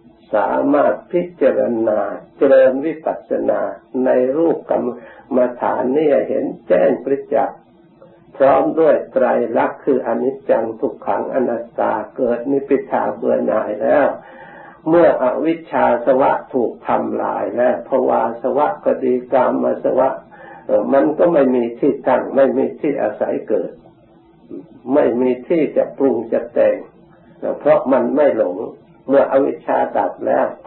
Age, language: 60-79, Thai